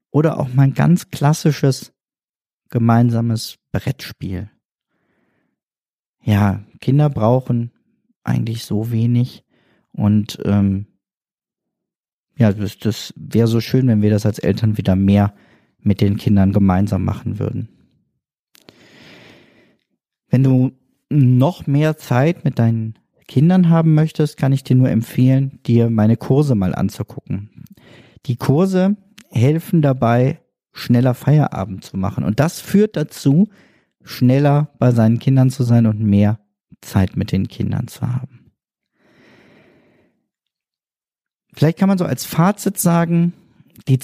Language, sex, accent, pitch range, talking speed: German, male, German, 115-150 Hz, 120 wpm